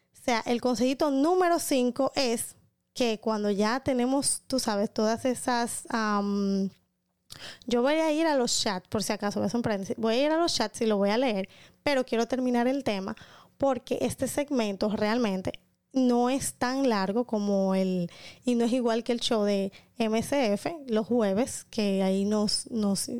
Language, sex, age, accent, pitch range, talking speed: Spanish, female, 20-39, American, 210-255 Hz, 180 wpm